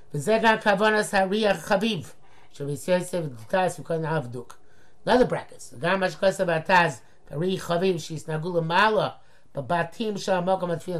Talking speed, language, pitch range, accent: 120 wpm, English, 140-190 Hz, American